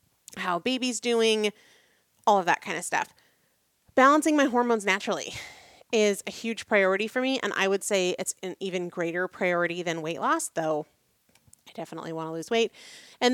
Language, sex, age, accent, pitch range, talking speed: English, female, 30-49, American, 180-230 Hz, 175 wpm